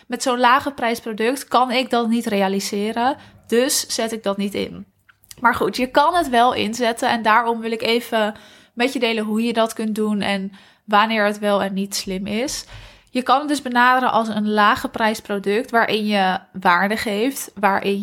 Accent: Dutch